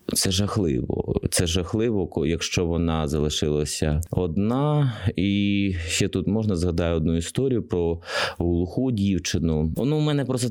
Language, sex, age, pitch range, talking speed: Ukrainian, male, 20-39, 85-110 Hz, 125 wpm